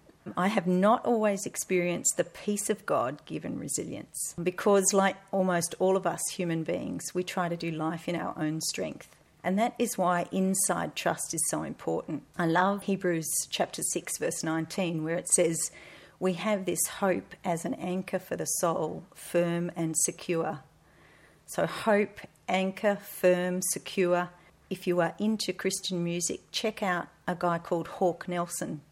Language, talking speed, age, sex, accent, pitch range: English, 160 wpm, 40-59, female, Australian, 170-190 Hz